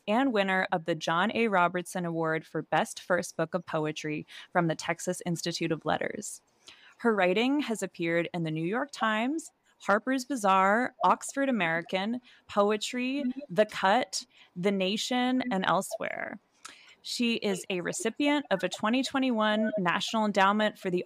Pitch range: 175-245 Hz